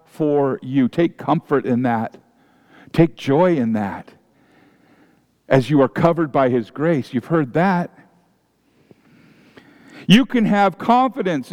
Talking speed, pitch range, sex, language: 125 wpm, 120-165 Hz, male, English